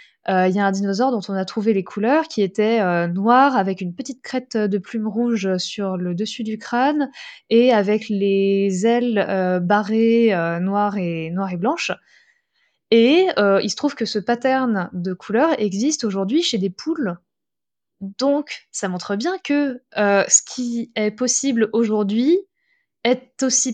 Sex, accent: female, French